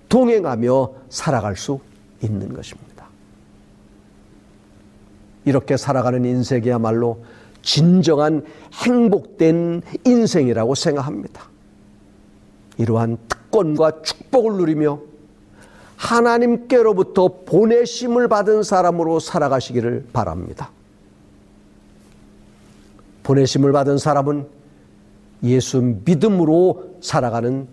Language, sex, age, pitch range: Korean, male, 50-69, 105-165 Hz